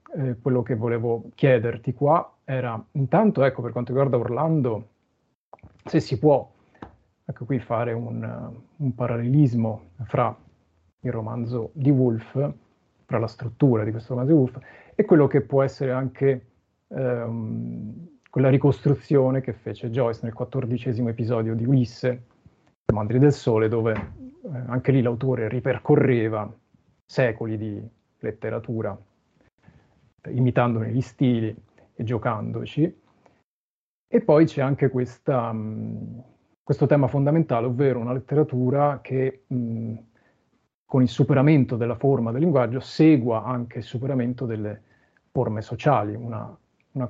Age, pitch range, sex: 30-49, 115-135 Hz, male